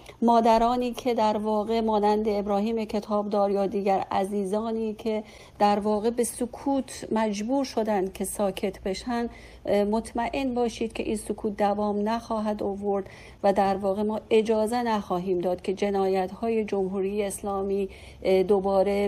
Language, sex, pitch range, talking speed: Persian, female, 195-225 Hz, 130 wpm